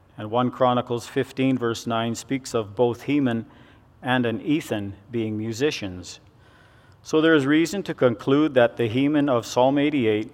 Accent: American